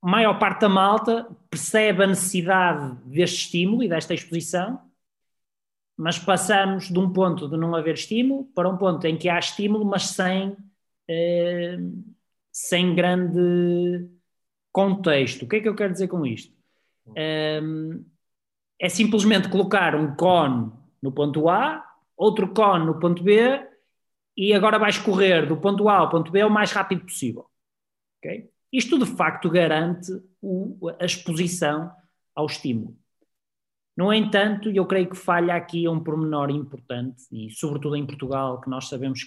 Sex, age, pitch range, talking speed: male, 20-39, 145-190 Hz, 150 wpm